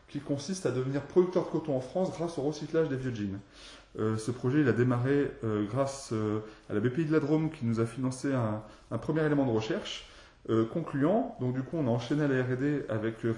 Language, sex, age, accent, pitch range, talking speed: French, male, 20-39, French, 110-145 Hz, 235 wpm